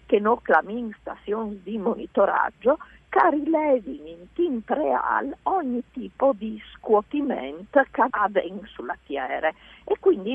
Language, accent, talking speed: Italian, native, 130 wpm